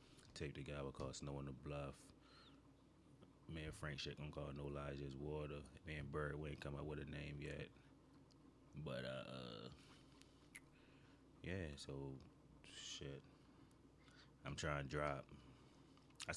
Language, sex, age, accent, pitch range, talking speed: English, male, 30-49, American, 70-80 Hz, 140 wpm